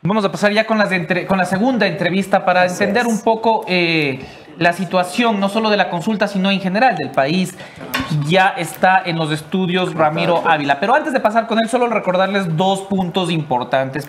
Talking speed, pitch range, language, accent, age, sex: 185 wpm, 150-195 Hz, English, Mexican, 30-49, male